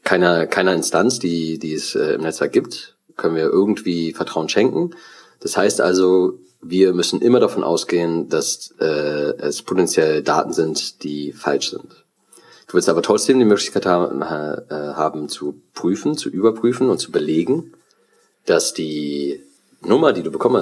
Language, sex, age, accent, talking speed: German, male, 30-49, German, 150 wpm